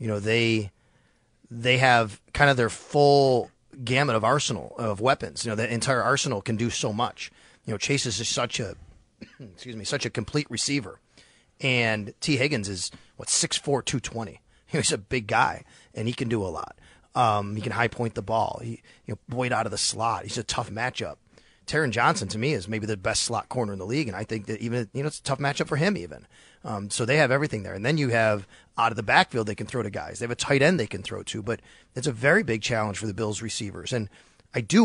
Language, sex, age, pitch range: English, male, 30-49, 110-140 Hz